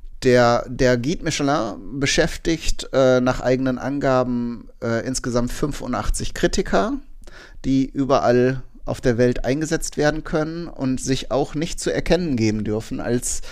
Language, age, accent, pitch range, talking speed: German, 30-49, German, 115-135 Hz, 135 wpm